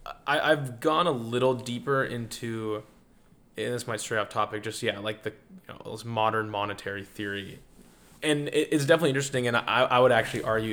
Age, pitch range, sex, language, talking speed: 20-39, 105-125 Hz, male, English, 185 wpm